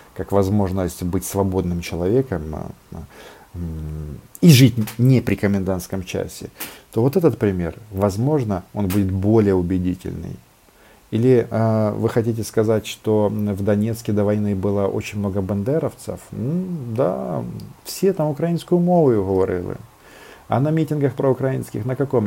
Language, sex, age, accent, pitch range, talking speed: Russian, male, 40-59, native, 100-140 Hz, 125 wpm